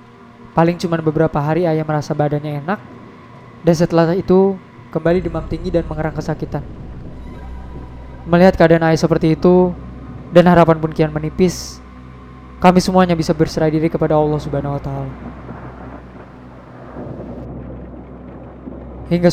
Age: 20-39